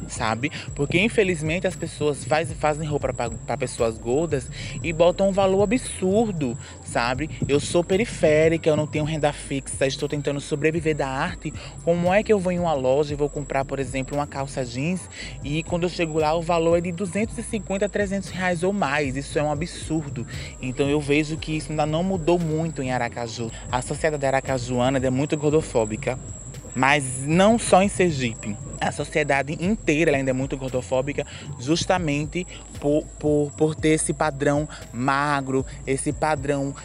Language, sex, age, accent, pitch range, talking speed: Portuguese, male, 20-39, Brazilian, 135-170 Hz, 170 wpm